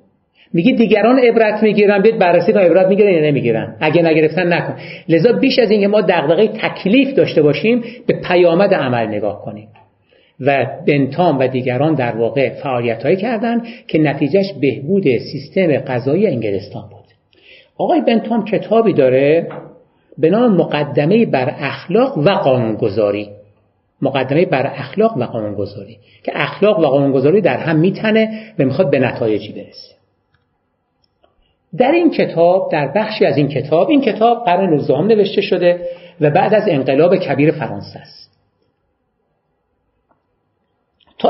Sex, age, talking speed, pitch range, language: male, 50-69, 135 wpm, 135-200 Hz, Persian